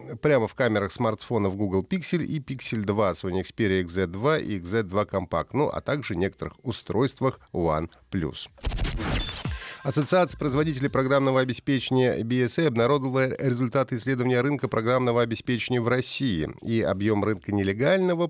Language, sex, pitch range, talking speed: Russian, male, 100-140 Hz, 130 wpm